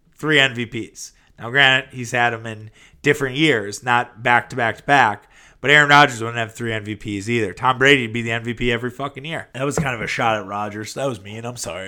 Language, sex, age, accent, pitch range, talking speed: English, male, 20-39, American, 115-140 Hz, 230 wpm